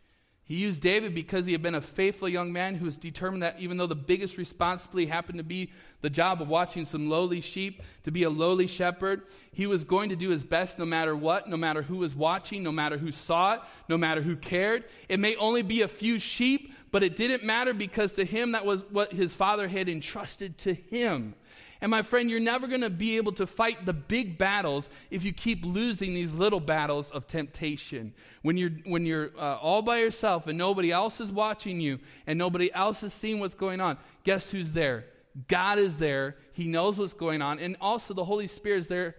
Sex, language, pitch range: male, English, 165-205 Hz